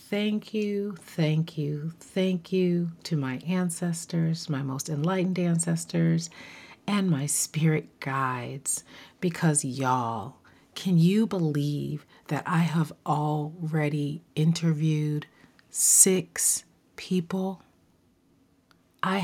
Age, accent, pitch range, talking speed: 40-59, American, 135-170 Hz, 95 wpm